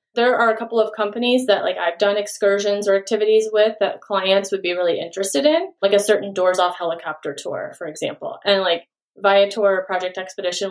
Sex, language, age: female, English, 30-49